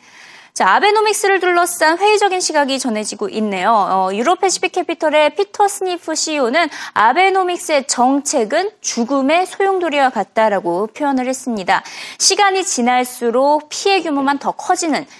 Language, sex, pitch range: Korean, female, 225-345 Hz